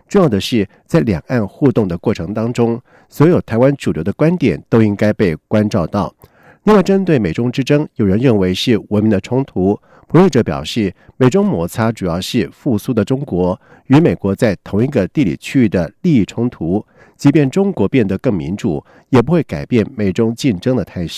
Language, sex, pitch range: German, male, 100-135 Hz